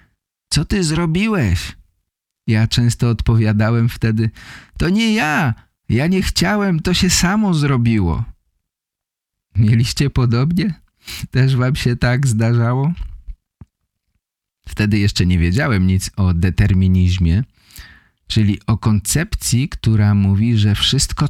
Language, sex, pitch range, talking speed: Polish, male, 95-140 Hz, 105 wpm